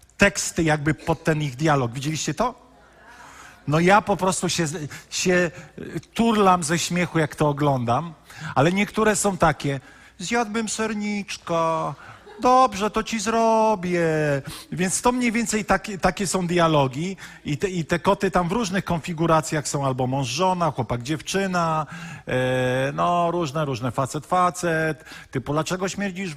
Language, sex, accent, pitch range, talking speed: Polish, male, native, 140-185 Hz, 135 wpm